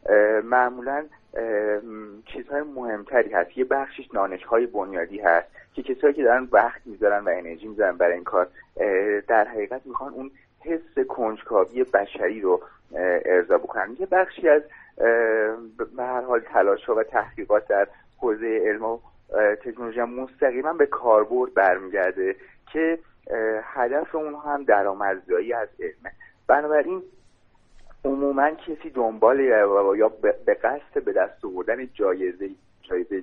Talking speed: 125 wpm